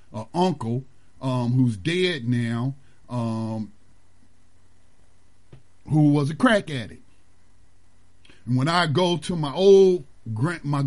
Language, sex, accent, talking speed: English, male, American, 110 wpm